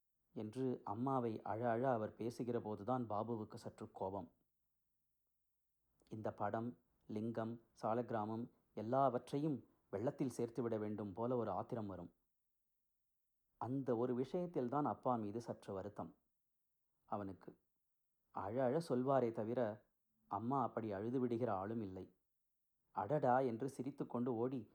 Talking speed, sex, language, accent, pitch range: 110 wpm, male, Tamil, native, 105-130 Hz